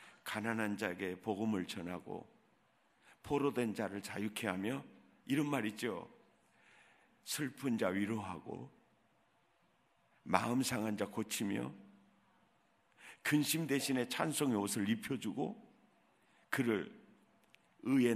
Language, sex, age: Korean, male, 50-69